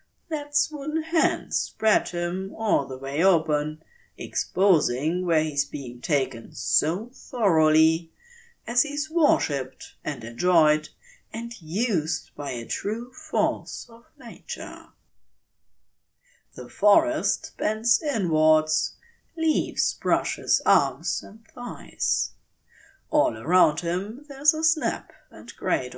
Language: English